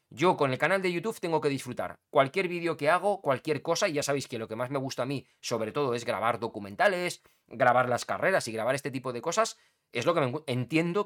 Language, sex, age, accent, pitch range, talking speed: Spanish, male, 20-39, Spanish, 125-175 Hz, 245 wpm